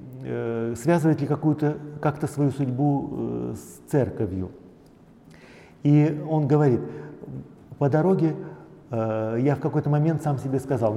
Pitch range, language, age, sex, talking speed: 120-155 Hz, Russian, 40-59, male, 120 wpm